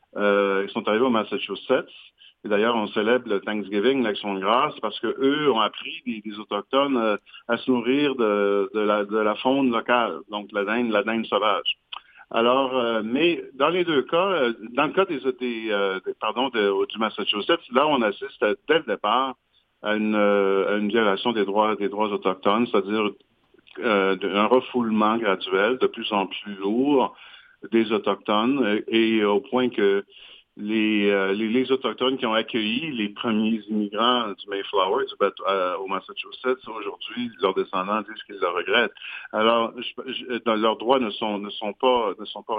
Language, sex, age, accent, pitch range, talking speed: French, male, 50-69, French, 105-140 Hz, 175 wpm